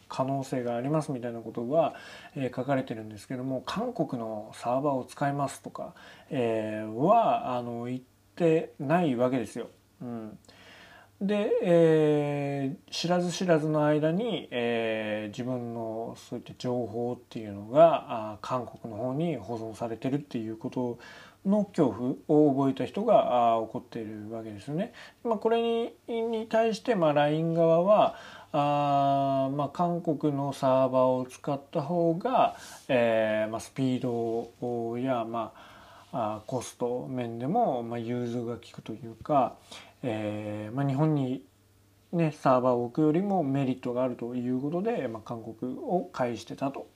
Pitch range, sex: 115-155 Hz, male